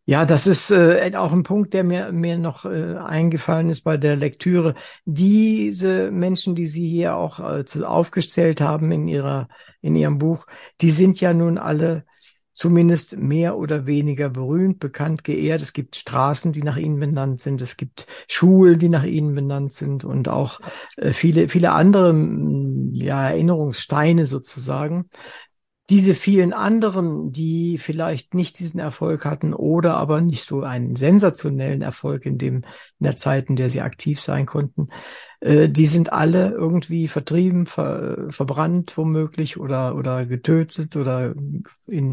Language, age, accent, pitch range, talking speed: German, 60-79, German, 140-170 Hz, 155 wpm